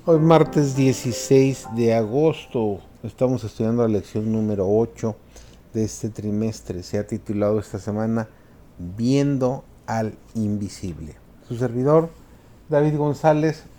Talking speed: 115 wpm